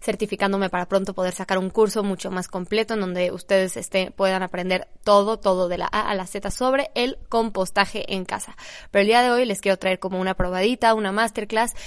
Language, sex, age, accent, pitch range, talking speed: Spanish, female, 20-39, Mexican, 190-230 Hz, 210 wpm